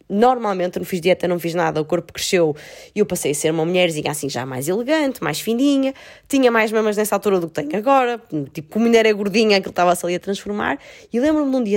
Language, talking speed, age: Portuguese, 255 wpm, 20-39